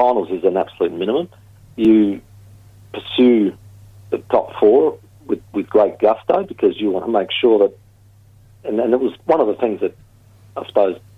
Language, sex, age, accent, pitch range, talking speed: English, male, 50-69, Australian, 100-120 Hz, 170 wpm